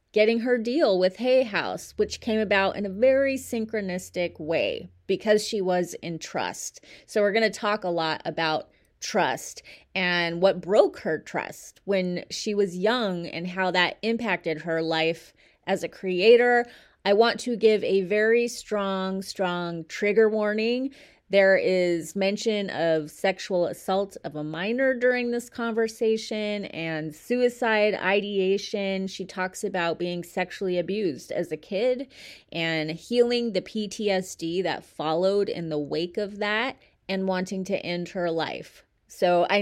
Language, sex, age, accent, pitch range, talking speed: English, female, 30-49, American, 175-225 Hz, 150 wpm